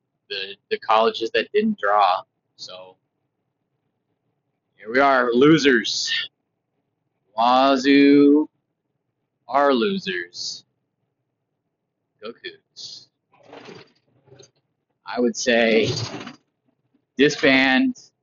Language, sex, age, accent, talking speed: English, male, 30-49, American, 65 wpm